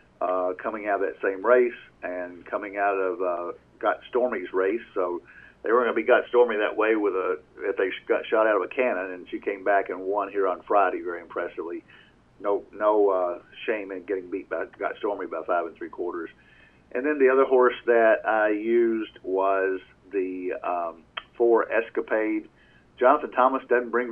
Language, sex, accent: English, male, American